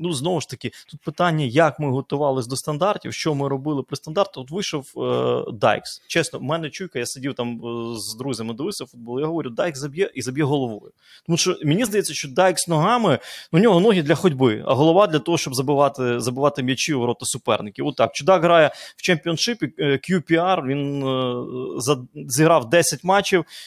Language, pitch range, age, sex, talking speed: Ukrainian, 130-165 Hz, 20-39, male, 185 wpm